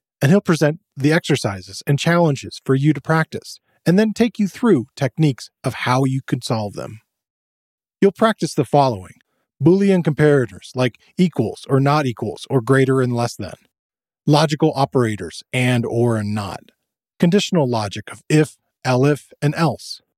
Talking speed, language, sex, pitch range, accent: 155 wpm, English, male, 120-160 Hz, American